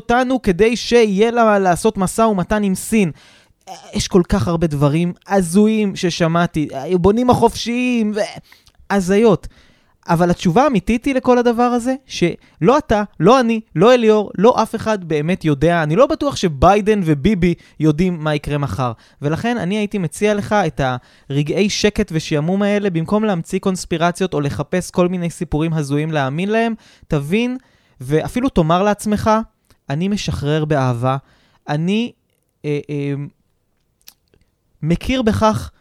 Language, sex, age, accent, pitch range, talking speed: Hebrew, male, 20-39, native, 155-215 Hz, 135 wpm